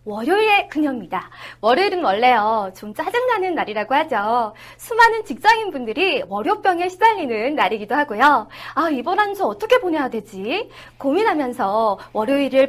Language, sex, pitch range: Korean, female, 245-400 Hz